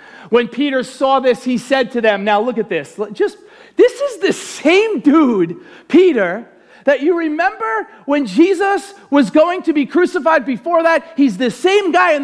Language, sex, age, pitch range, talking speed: English, male, 40-59, 260-345 Hz, 175 wpm